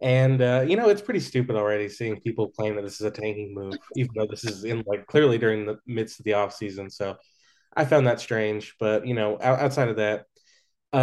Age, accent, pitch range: 20-39, American, 105-125 Hz